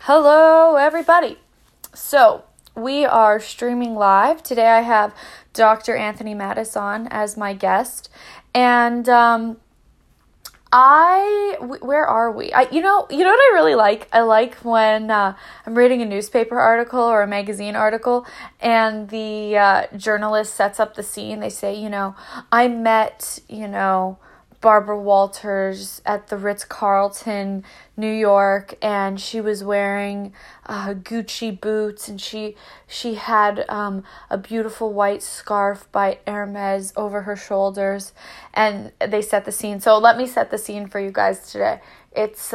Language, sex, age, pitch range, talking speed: English, female, 20-39, 200-230 Hz, 150 wpm